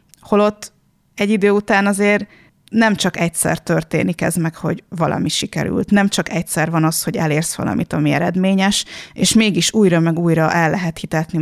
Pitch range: 165-195 Hz